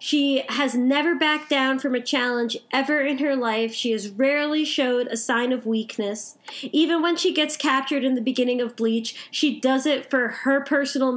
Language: English